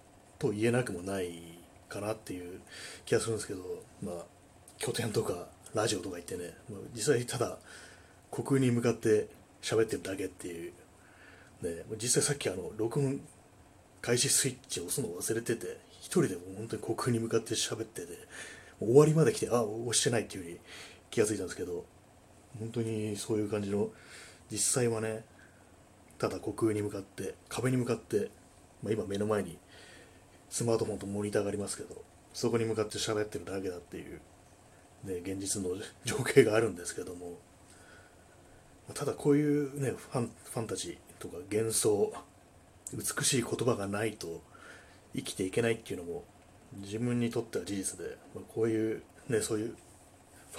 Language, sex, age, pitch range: Japanese, male, 30-49, 90-115 Hz